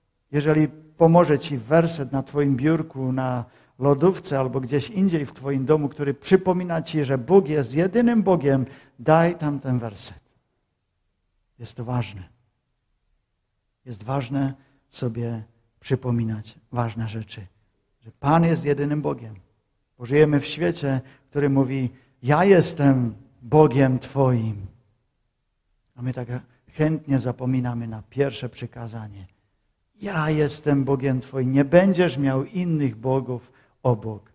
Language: Czech